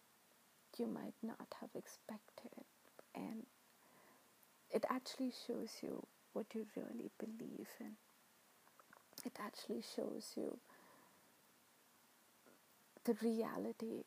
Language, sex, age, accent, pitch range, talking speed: English, female, 30-49, Indian, 240-270 Hz, 90 wpm